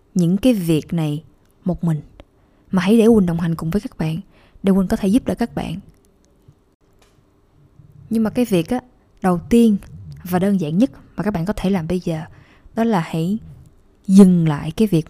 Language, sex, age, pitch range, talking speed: Vietnamese, female, 10-29, 165-220 Hz, 200 wpm